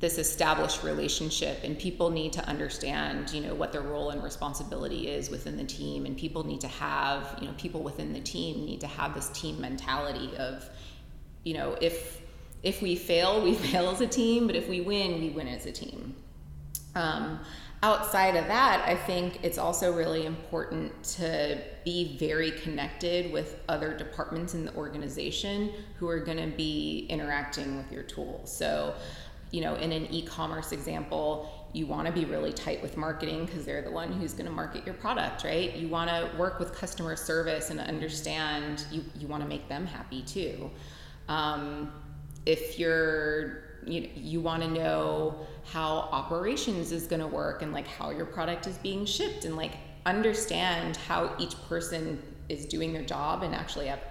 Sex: female